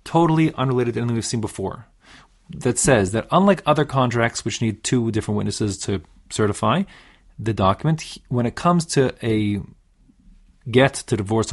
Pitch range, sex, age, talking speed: 105-145 Hz, male, 30-49, 155 wpm